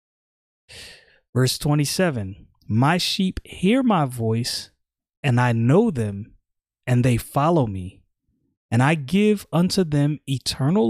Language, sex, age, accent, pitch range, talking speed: English, male, 20-39, American, 120-160 Hz, 115 wpm